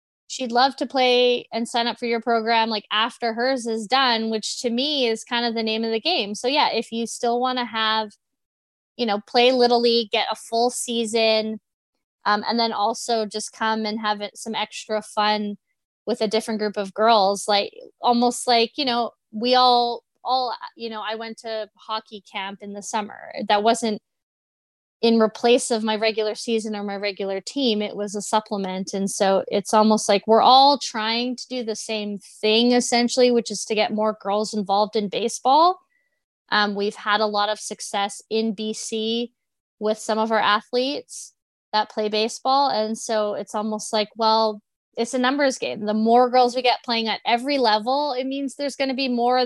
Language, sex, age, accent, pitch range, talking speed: English, female, 20-39, American, 215-240 Hz, 195 wpm